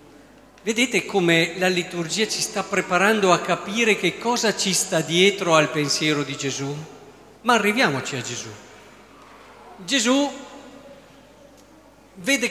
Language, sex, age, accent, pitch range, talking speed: Italian, male, 50-69, native, 150-215 Hz, 115 wpm